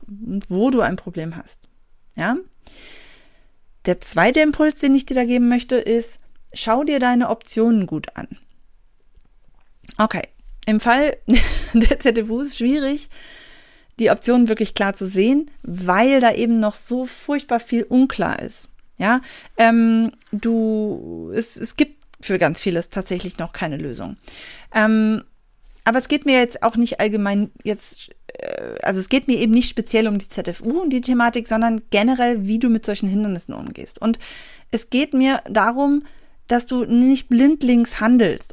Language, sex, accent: German, female, German